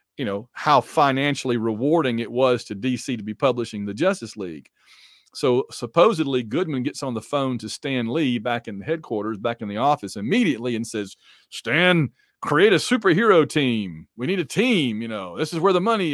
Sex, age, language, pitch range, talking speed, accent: male, 40-59, English, 115-170 Hz, 195 wpm, American